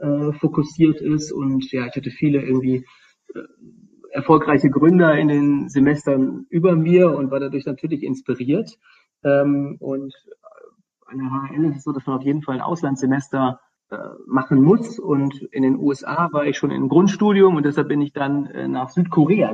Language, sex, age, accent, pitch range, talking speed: German, male, 40-59, German, 135-160 Hz, 155 wpm